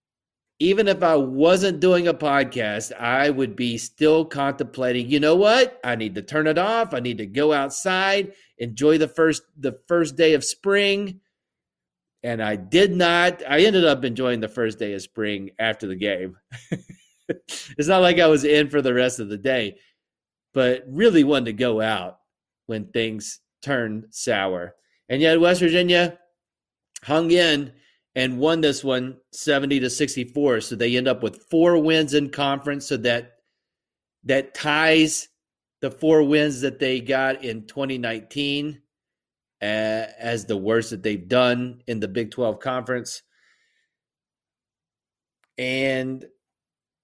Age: 40-59